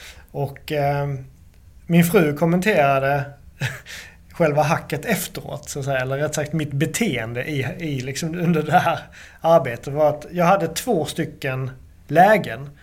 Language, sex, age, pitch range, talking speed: Swedish, male, 30-49, 140-185 Hz, 135 wpm